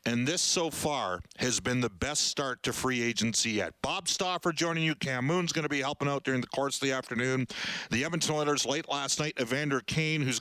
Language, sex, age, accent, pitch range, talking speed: English, male, 50-69, American, 115-145 Hz, 220 wpm